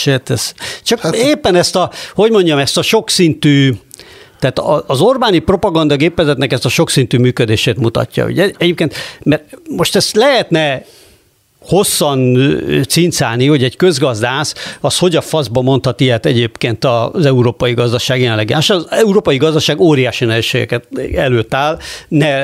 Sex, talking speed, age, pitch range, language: male, 130 wpm, 60-79, 125-170 Hz, Hungarian